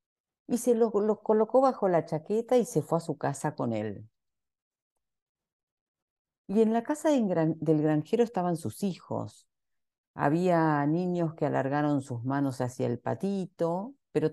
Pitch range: 145-200 Hz